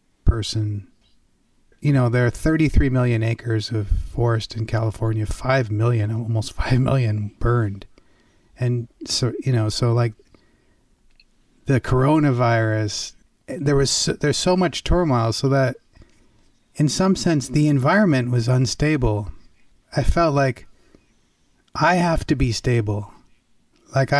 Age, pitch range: 30-49, 115-140 Hz